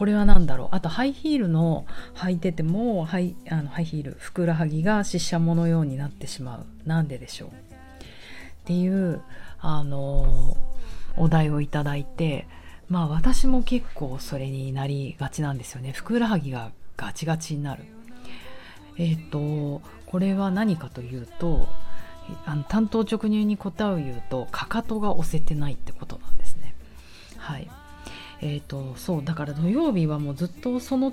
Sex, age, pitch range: female, 40-59, 140-205 Hz